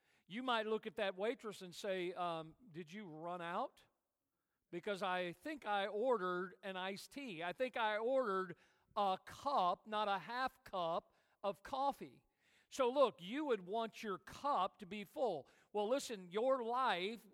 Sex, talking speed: male, 165 wpm